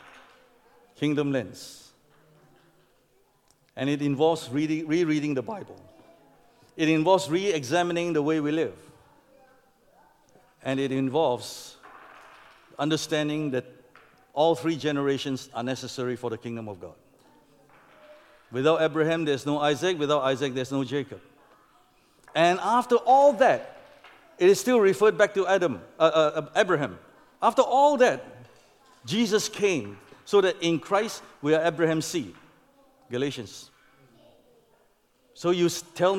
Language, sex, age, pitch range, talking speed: English, male, 50-69, 150-210 Hz, 115 wpm